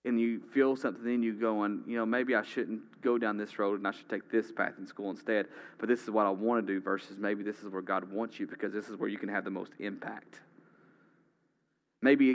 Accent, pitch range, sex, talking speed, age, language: American, 105-135 Hz, male, 255 wpm, 30-49, English